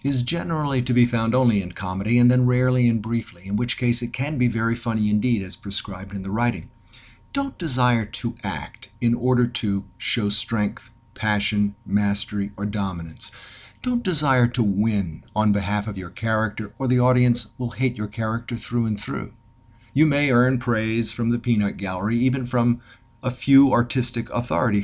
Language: English